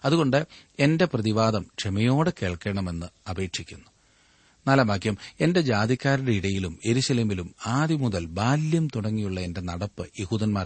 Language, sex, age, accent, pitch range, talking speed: Malayalam, male, 40-59, native, 100-125 Hz, 95 wpm